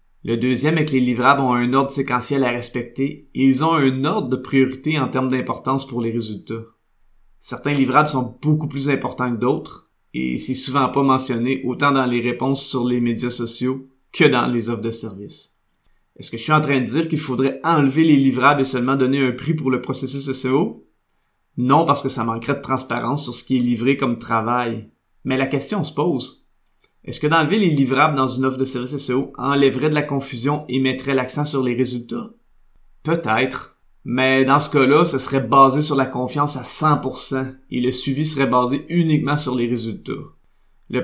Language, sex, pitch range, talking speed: French, male, 125-140 Hz, 200 wpm